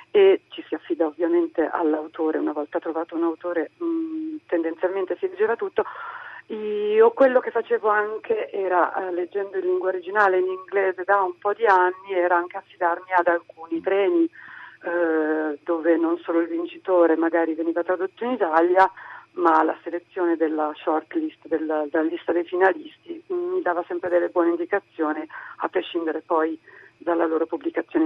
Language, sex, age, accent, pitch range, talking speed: Italian, female, 40-59, native, 170-210 Hz, 155 wpm